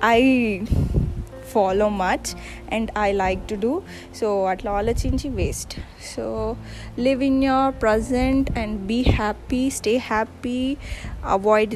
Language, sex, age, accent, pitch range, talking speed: Telugu, female, 20-39, native, 185-225 Hz, 110 wpm